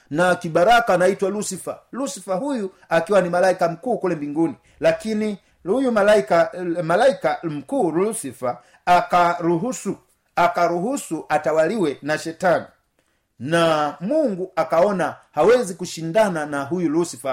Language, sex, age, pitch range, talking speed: Swahili, male, 50-69, 170-225 Hz, 110 wpm